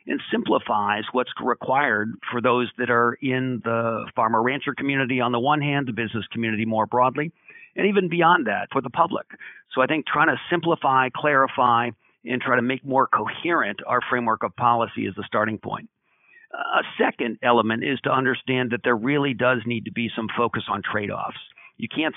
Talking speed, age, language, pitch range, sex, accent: 185 wpm, 50-69, English, 115-130 Hz, male, American